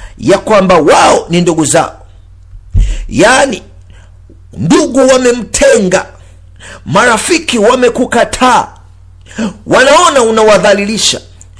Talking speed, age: 65 wpm, 50-69